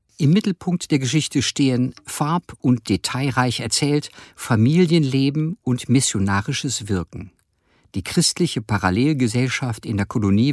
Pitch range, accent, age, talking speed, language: 105-140 Hz, German, 50-69, 110 wpm, German